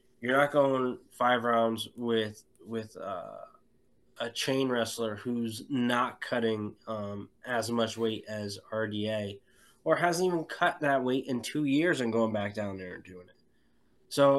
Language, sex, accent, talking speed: English, male, American, 160 wpm